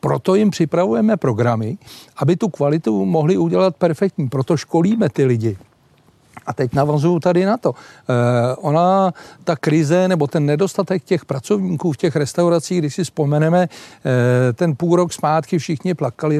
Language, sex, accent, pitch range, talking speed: Czech, male, native, 135-175 Hz, 145 wpm